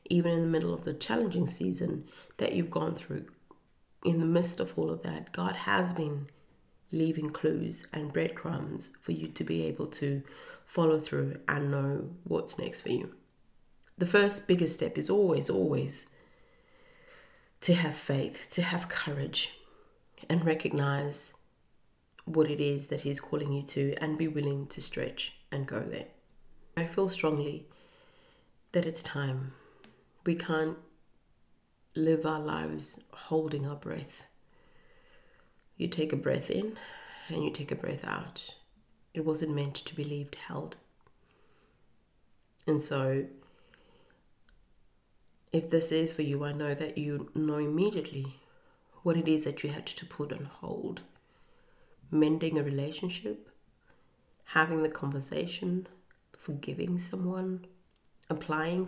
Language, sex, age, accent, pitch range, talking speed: English, female, 30-49, British, 140-170 Hz, 140 wpm